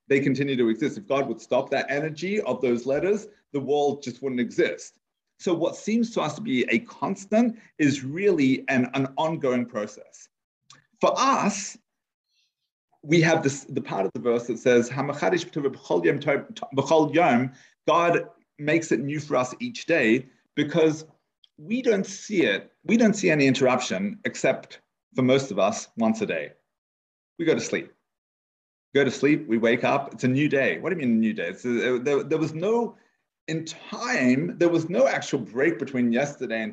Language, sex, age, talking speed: English, male, 40-59, 175 wpm